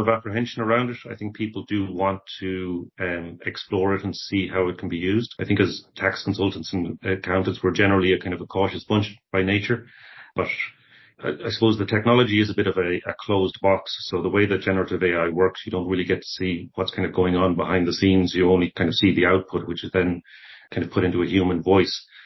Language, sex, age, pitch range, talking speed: English, male, 40-59, 85-95 Hz, 235 wpm